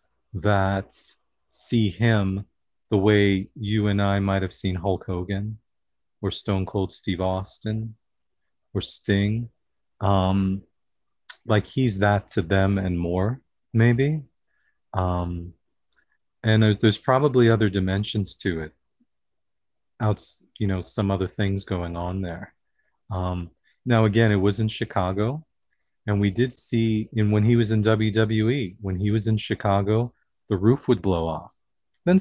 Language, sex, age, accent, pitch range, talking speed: English, male, 30-49, American, 95-110 Hz, 140 wpm